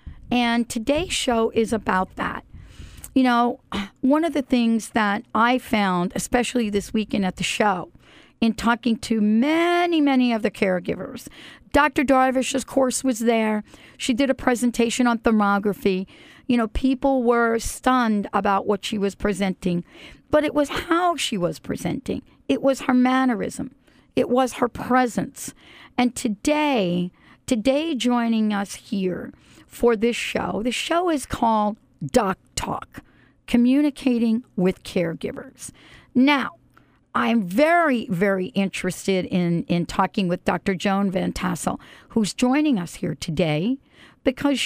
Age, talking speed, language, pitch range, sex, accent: 50-69, 135 wpm, English, 205-260 Hz, female, American